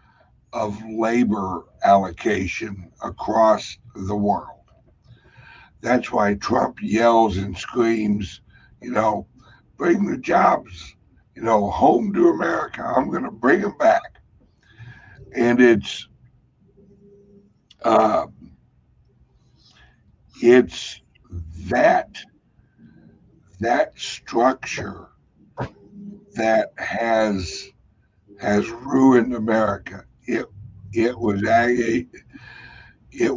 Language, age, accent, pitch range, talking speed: English, 60-79, American, 100-115 Hz, 80 wpm